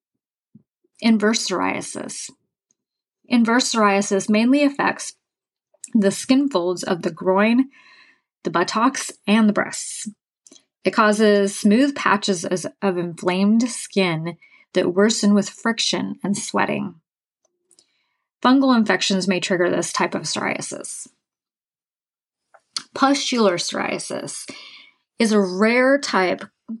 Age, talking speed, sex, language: 30-49, 100 wpm, female, English